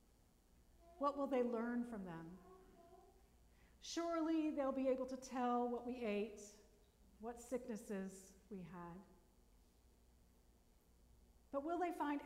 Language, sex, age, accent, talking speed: English, female, 40-59, American, 115 wpm